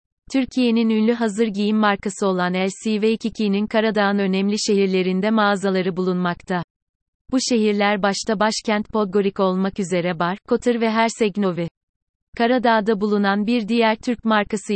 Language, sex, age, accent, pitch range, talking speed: Turkish, female, 30-49, native, 195-225 Hz, 120 wpm